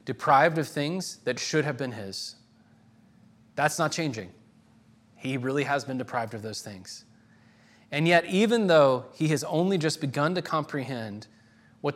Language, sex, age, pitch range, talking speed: English, male, 20-39, 115-145 Hz, 155 wpm